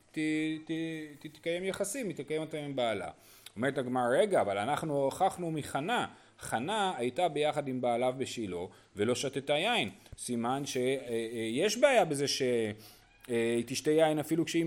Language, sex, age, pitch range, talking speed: Hebrew, male, 30-49, 110-160 Hz, 155 wpm